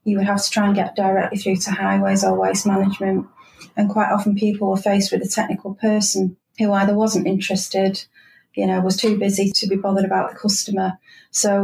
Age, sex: 30-49, female